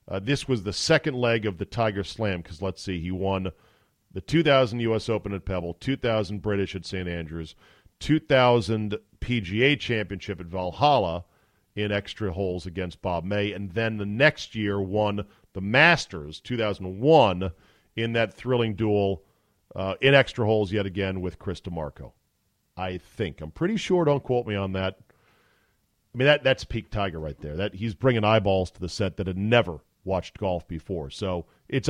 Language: English